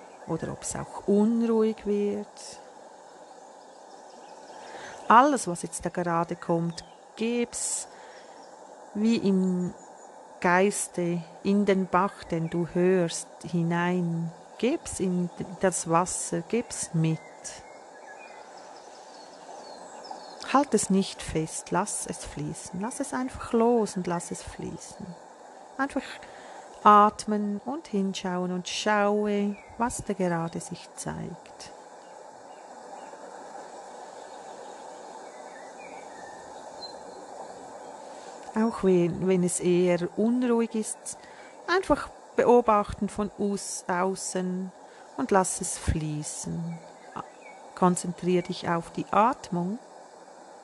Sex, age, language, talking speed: female, 40-59, German, 90 wpm